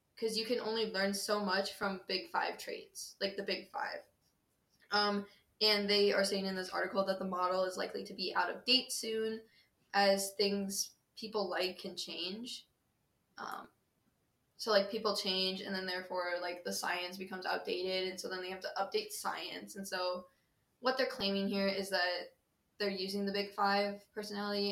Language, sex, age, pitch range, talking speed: English, female, 10-29, 190-210 Hz, 180 wpm